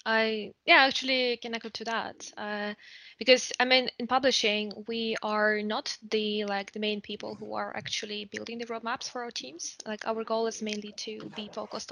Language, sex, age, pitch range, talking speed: English, female, 20-39, 205-230 Hz, 190 wpm